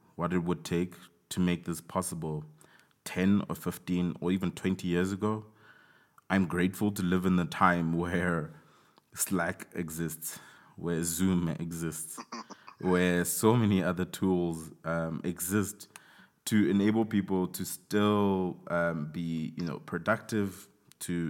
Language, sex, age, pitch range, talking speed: English, male, 20-39, 85-105 Hz, 130 wpm